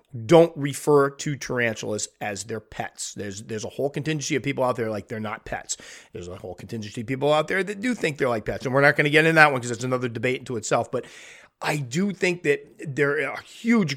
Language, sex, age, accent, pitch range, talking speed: English, male, 30-49, American, 120-150 Hz, 245 wpm